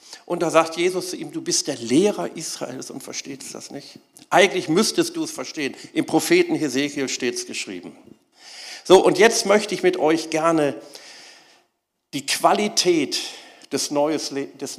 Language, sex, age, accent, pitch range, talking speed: German, male, 50-69, German, 130-200 Hz, 150 wpm